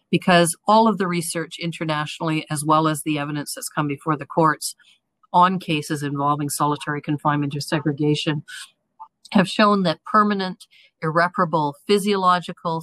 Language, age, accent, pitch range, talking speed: English, 50-69, American, 150-175 Hz, 135 wpm